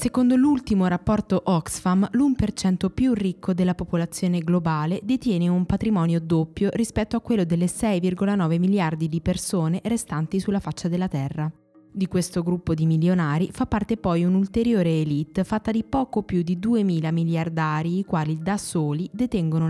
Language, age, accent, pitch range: Italian, 20-39, native, 165-200 Hz